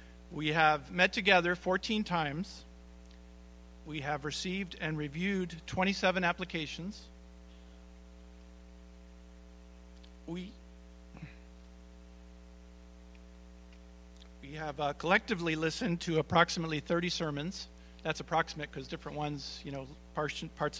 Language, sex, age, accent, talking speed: English, male, 50-69, American, 90 wpm